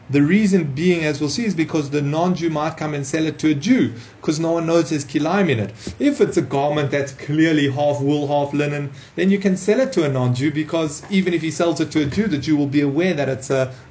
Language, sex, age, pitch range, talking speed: English, male, 30-49, 140-175 Hz, 260 wpm